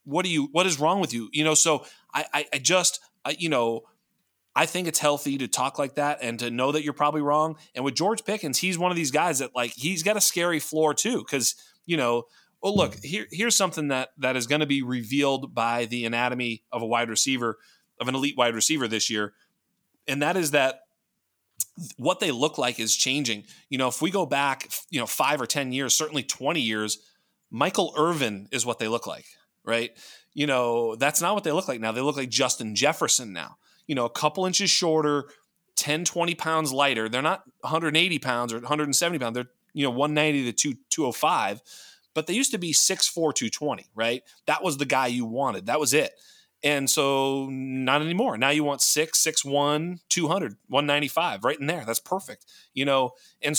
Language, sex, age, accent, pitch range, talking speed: English, male, 30-49, American, 125-160 Hz, 210 wpm